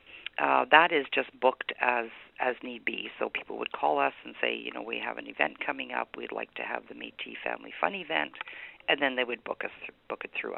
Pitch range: 125-140 Hz